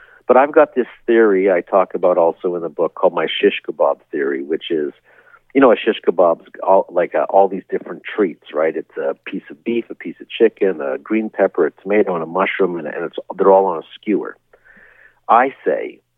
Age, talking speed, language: 50-69, 220 wpm, English